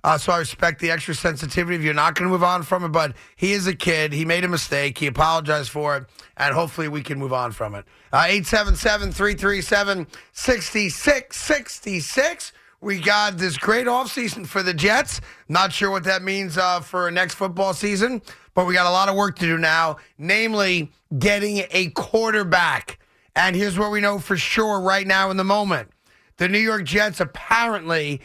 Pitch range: 165-205 Hz